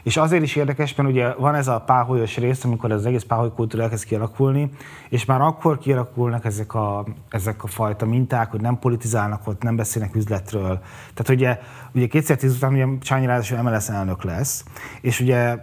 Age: 20-39